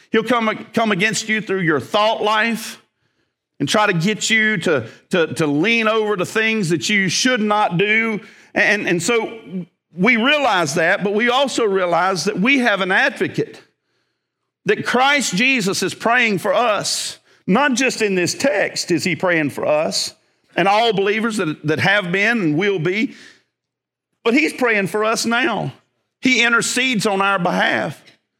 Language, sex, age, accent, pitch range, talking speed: English, male, 50-69, American, 190-235 Hz, 165 wpm